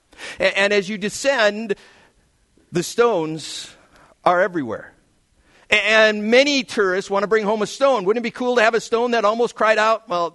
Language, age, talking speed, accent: English, 50-69, 175 wpm, American